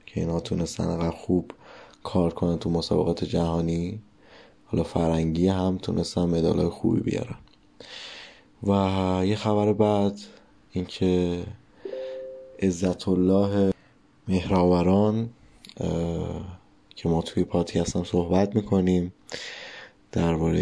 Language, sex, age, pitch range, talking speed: Persian, male, 20-39, 85-100 Hz, 95 wpm